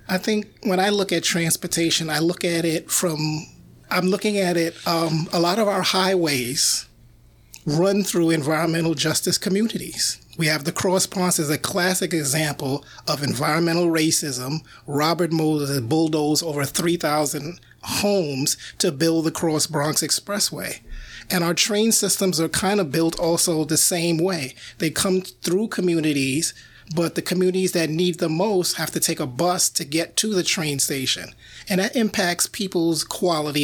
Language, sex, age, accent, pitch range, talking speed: English, male, 30-49, American, 155-185 Hz, 160 wpm